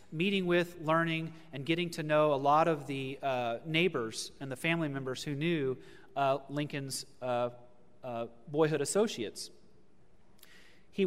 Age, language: 30-49, English